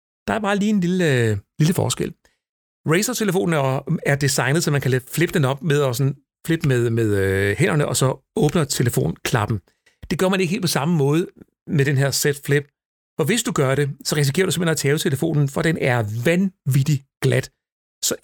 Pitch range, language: 130-165 Hz, Danish